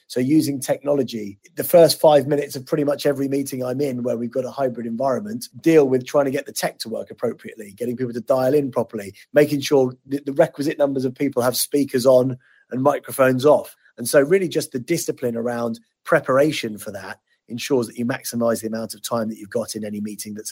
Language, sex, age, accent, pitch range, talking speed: English, male, 30-49, British, 120-145 Hz, 215 wpm